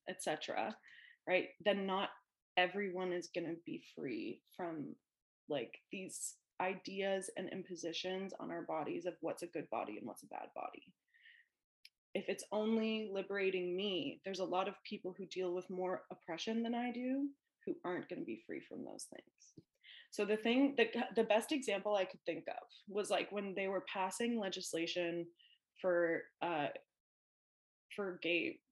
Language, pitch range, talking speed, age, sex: English, 180-225 Hz, 165 wpm, 20-39, female